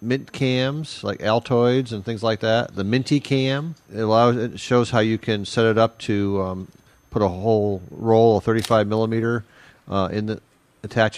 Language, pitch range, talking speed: English, 110-130 Hz, 175 wpm